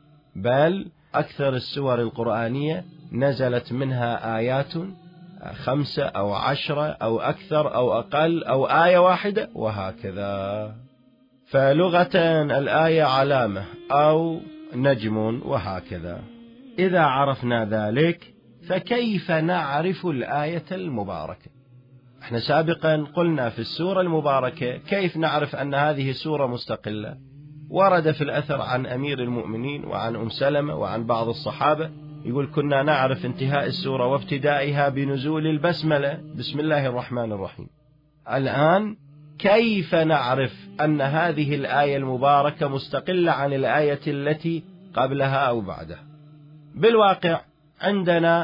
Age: 40-59